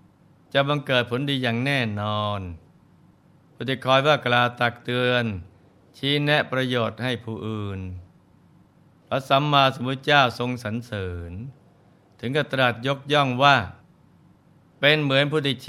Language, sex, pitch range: Thai, male, 110-130 Hz